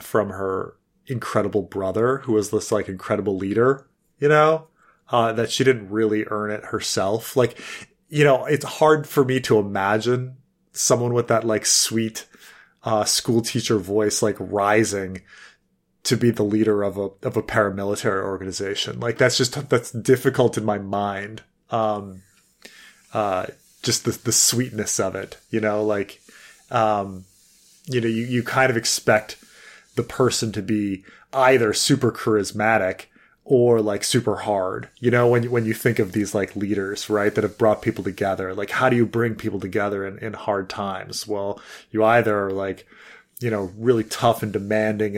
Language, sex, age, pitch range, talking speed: English, male, 30-49, 105-125 Hz, 170 wpm